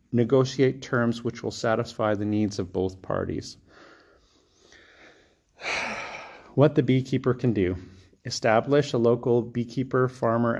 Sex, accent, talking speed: male, American, 115 wpm